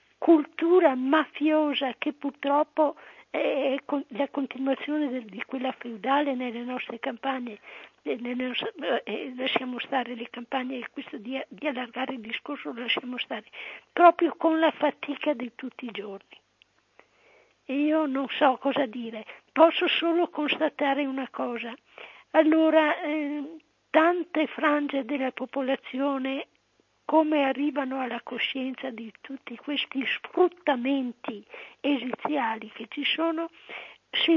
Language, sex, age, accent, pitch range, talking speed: Italian, female, 50-69, native, 265-315 Hz, 120 wpm